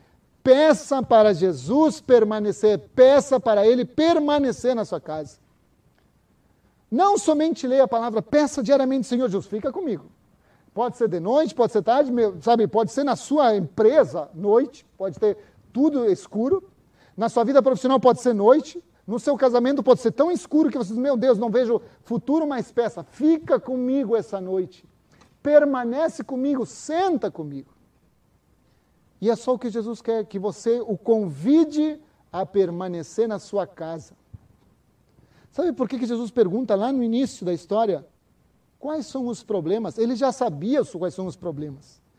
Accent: Brazilian